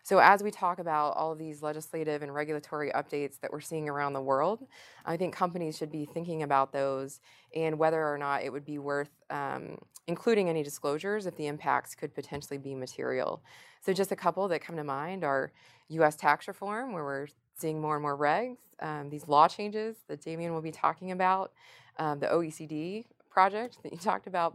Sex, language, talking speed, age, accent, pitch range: female, English, 200 wpm, 20-39, American, 145-180 Hz